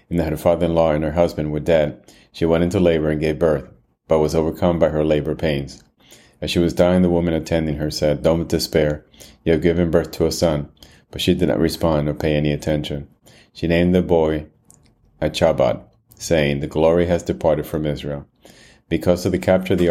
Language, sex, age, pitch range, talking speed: English, male, 30-49, 75-85 Hz, 210 wpm